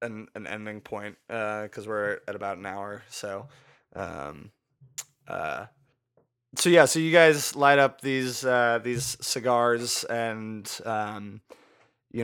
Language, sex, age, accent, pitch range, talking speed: English, male, 20-39, American, 110-130 Hz, 135 wpm